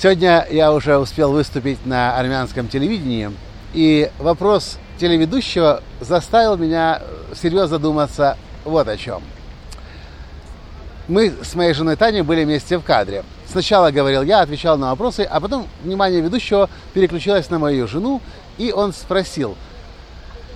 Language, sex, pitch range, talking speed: Russian, male, 125-180 Hz, 130 wpm